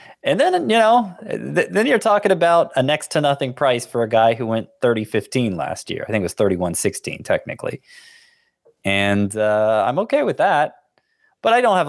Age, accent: 30-49, American